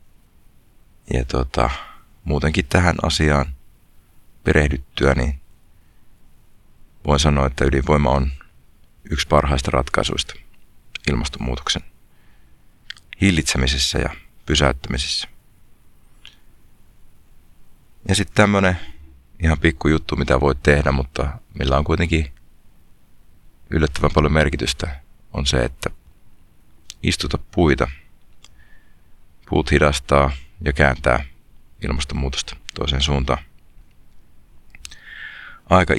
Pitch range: 70-80 Hz